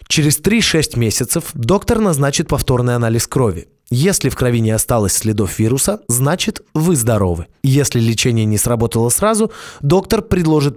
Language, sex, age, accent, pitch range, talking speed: Russian, male, 20-39, native, 110-145 Hz, 140 wpm